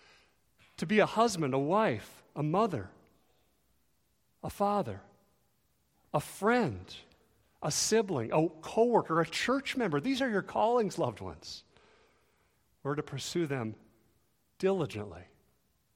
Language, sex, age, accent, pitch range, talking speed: English, male, 50-69, American, 130-200 Hz, 115 wpm